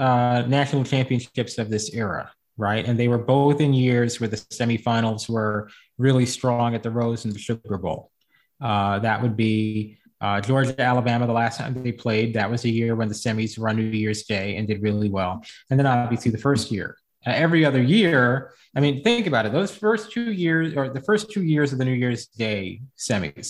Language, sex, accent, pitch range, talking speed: English, male, American, 110-135 Hz, 215 wpm